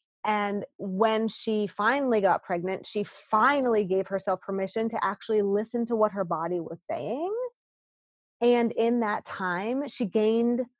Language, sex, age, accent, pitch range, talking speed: English, female, 30-49, American, 190-245 Hz, 145 wpm